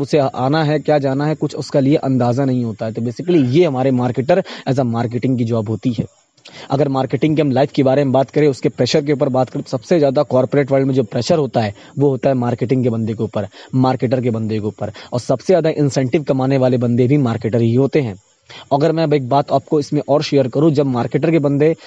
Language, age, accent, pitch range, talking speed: Hindi, 20-39, native, 125-150 Hz, 245 wpm